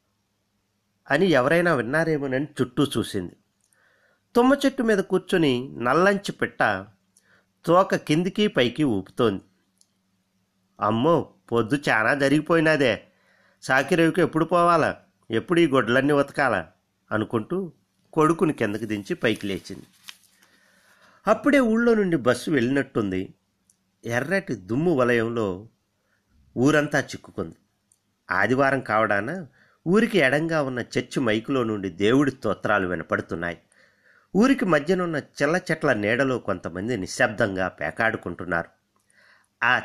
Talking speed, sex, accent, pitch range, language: 90 wpm, male, native, 100-155 Hz, Telugu